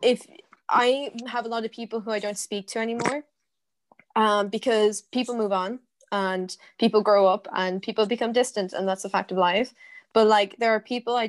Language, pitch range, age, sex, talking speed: English, 195-225 Hz, 10-29, female, 200 wpm